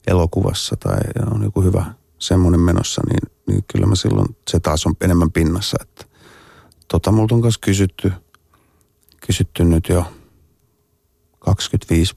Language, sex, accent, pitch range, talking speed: Finnish, male, native, 85-110 Hz, 130 wpm